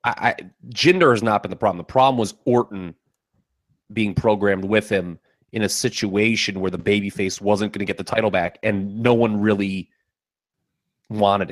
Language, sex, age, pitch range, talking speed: English, male, 30-49, 100-130 Hz, 175 wpm